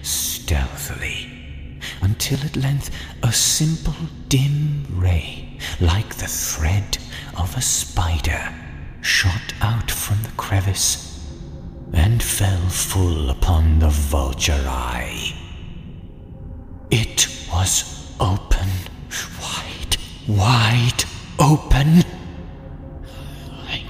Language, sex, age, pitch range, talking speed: English, male, 40-59, 80-100 Hz, 85 wpm